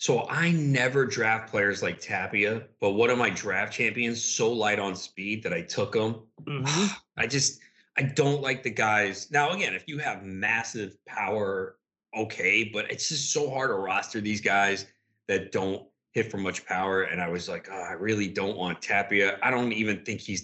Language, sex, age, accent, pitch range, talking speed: English, male, 30-49, American, 95-125 Hz, 195 wpm